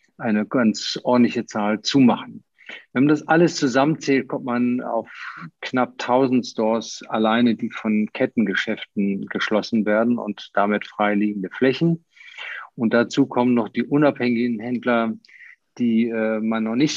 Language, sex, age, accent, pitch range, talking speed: German, male, 50-69, German, 110-125 Hz, 135 wpm